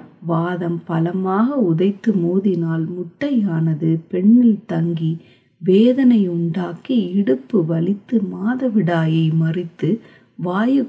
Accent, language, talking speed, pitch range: native, Tamil, 75 wpm, 165-220 Hz